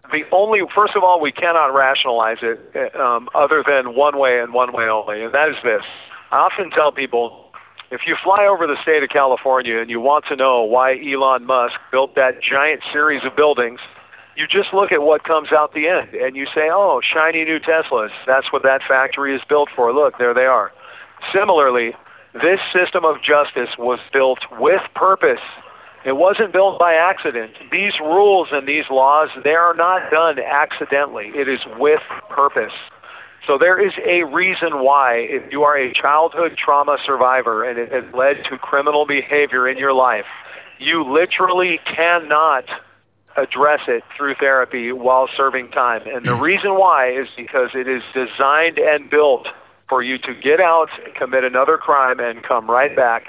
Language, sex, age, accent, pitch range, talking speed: English, male, 50-69, American, 130-170 Hz, 180 wpm